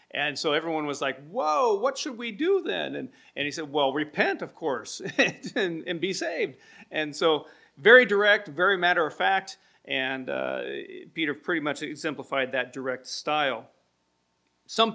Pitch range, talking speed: 135-185 Hz, 165 wpm